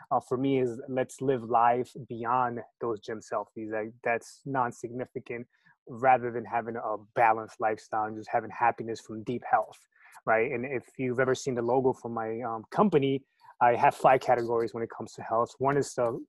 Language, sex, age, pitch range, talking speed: English, male, 20-39, 115-130 Hz, 190 wpm